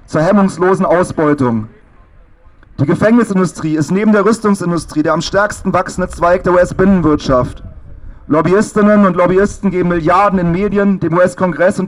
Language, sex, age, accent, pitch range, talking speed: German, male, 40-59, German, 155-195 Hz, 130 wpm